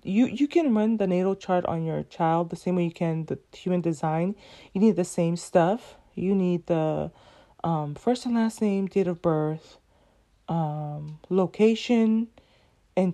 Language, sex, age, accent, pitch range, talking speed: English, female, 30-49, American, 165-195 Hz, 170 wpm